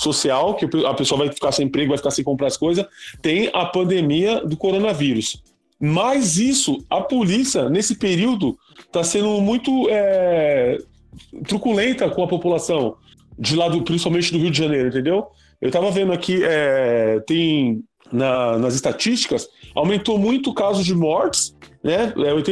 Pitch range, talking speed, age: 150-215 Hz, 150 wpm, 20-39